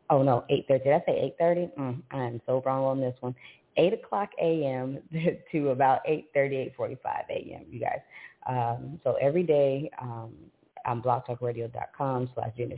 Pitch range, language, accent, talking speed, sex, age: 125-175 Hz, English, American, 155 wpm, female, 30-49